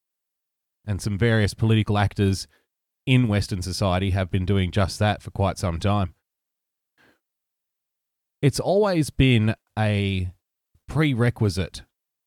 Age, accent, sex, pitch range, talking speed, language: 30-49, Australian, male, 95-120 Hz, 110 wpm, English